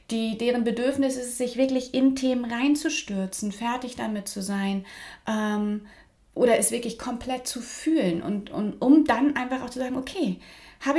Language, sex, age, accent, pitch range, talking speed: German, female, 30-49, German, 200-265 Hz, 170 wpm